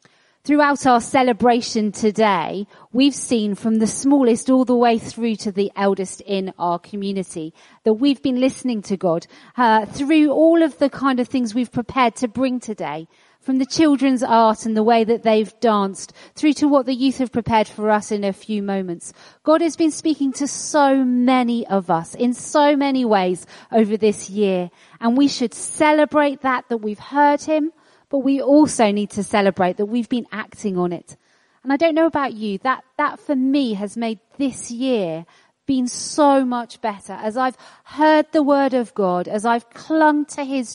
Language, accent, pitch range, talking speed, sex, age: English, British, 205-275 Hz, 190 wpm, female, 40-59